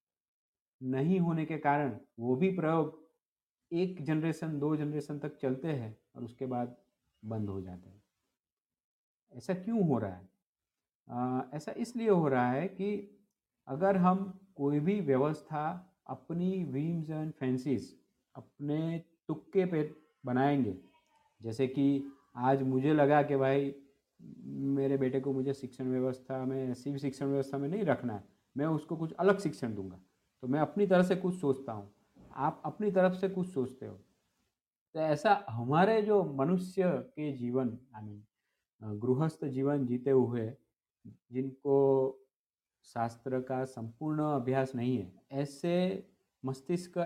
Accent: native